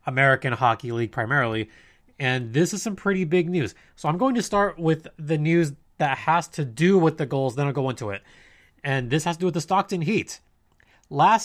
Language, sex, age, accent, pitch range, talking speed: English, male, 20-39, American, 125-170 Hz, 215 wpm